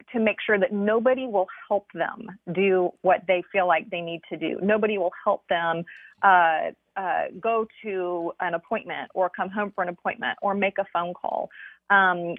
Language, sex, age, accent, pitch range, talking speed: English, female, 30-49, American, 180-210 Hz, 190 wpm